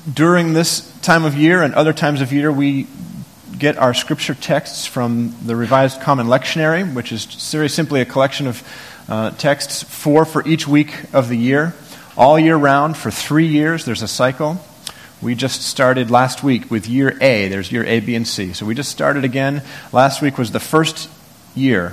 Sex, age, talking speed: male, 40-59, 190 wpm